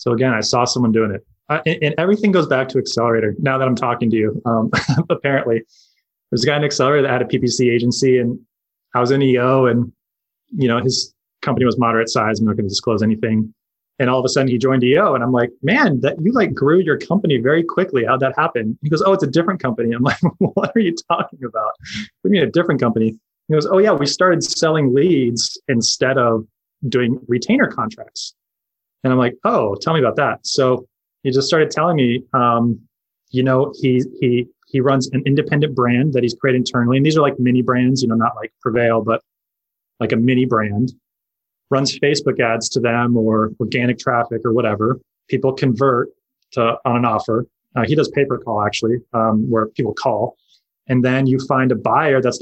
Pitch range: 115-135 Hz